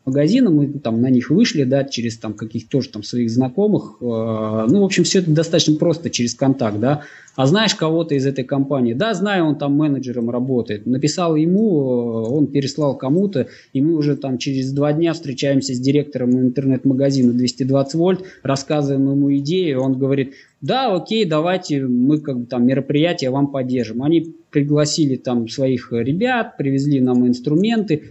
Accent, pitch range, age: native, 130-155 Hz, 20-39